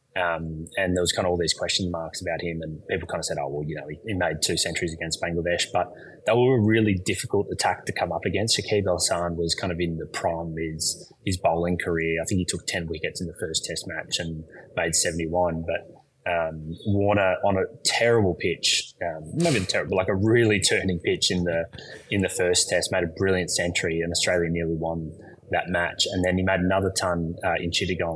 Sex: male